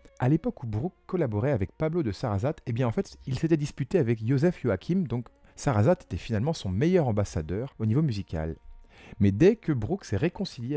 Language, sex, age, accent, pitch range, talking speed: French, male, 40-59, French, 95-135 Hz, 195 wpm